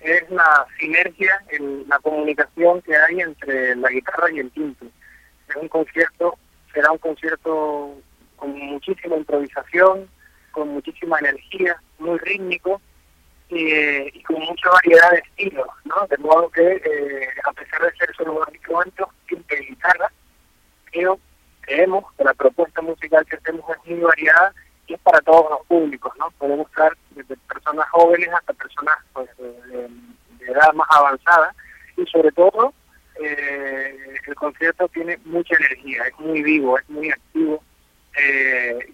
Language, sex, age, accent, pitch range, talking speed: English, male, 40-59, American, 140-170 Hz, 145 wpm